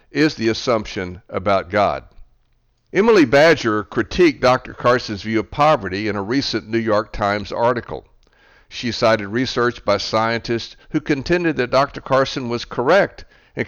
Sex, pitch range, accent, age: male, 110-140 Hz, American, 60-79